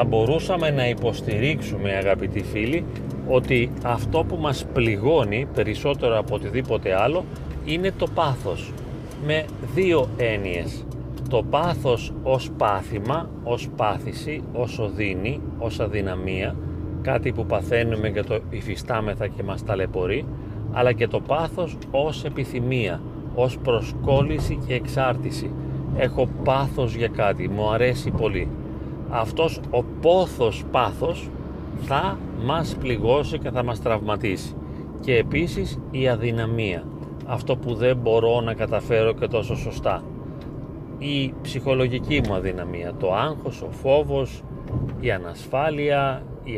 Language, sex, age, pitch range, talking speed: Greek, male, 40-59, 105-135 Hz, 115 wpm